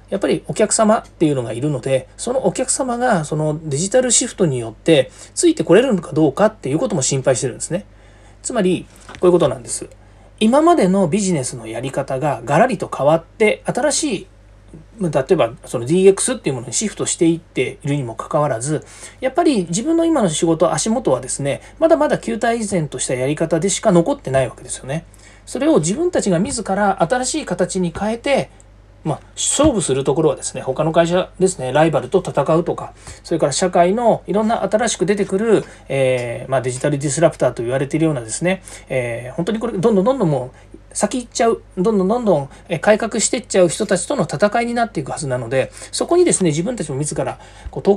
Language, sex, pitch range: Japanese, male, 135-215 Hz